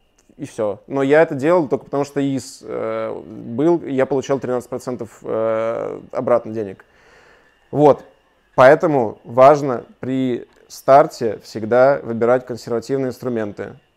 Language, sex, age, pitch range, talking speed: Russian, male, 20-39, 125-155 Hz, 120 wpm